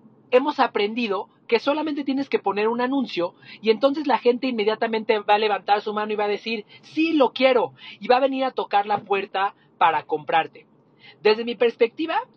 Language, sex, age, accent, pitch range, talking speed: Spanish, male, 40-59, Mexican, 180-245 Hz, 190 wpm